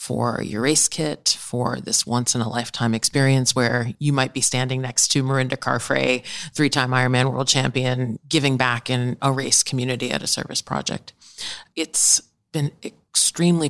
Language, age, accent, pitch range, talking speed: English, 40-59, American, 120-135 Hz, 165 wpm